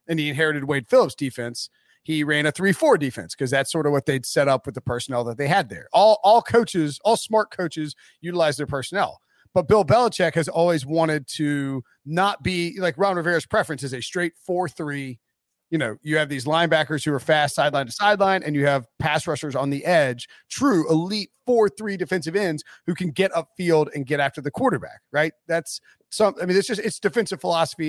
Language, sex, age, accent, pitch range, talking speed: English, male, 30-49, American, 145-185 Hz, 205 wpm